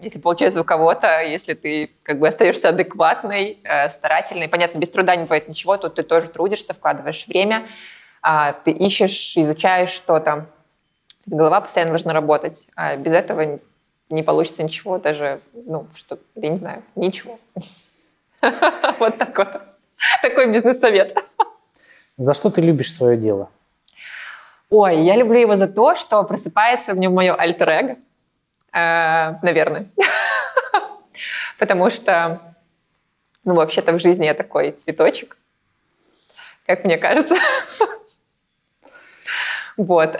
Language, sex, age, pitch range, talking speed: Russian, female, 20-39, 155-195 Hz, 125 wpm